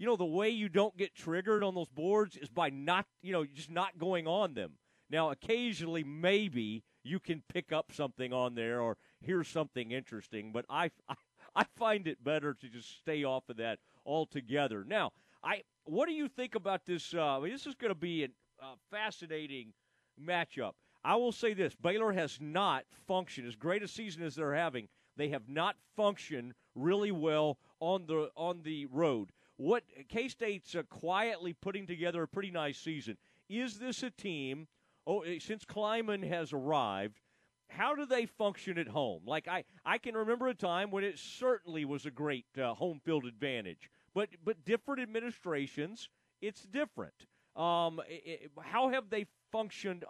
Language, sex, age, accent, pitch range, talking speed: English, male, 40-59, American, 145-205 Hz, 175 wpm